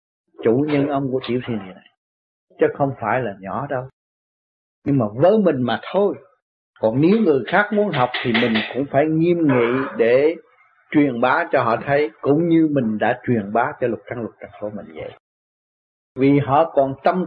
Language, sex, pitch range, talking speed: Vietnamese, male, 115-150 Hz, 185 wpm